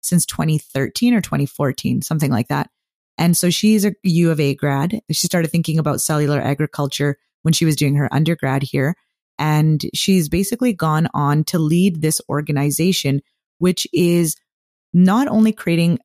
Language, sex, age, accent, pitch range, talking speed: English, female, 20-39, American, 145-175 Hz, 155 wpm